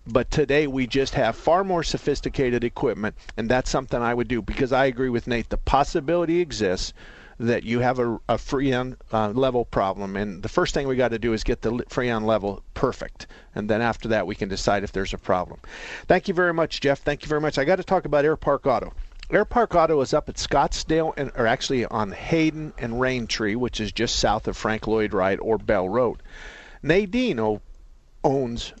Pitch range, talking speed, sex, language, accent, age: 110-150 Hz, 210 wpm, male, English, American, 50-69